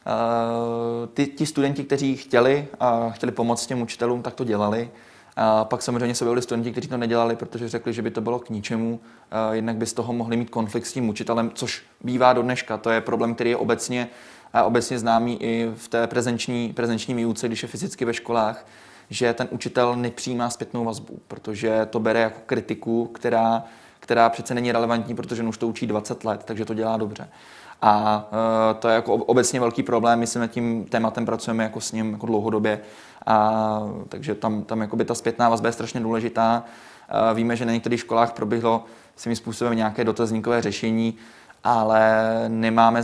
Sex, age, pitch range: male, 20-39, 110-120 Hz